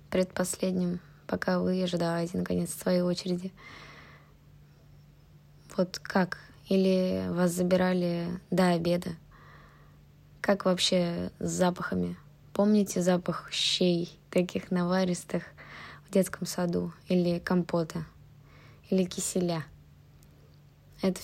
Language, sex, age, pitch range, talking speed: Russian, female, 20-39, 145-190 Hz, 90 wpm